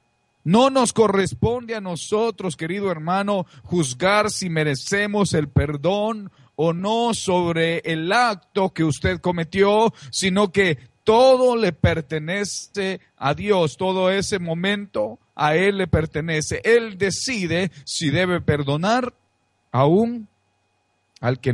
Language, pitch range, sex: Spanish, 120-195 Hz, male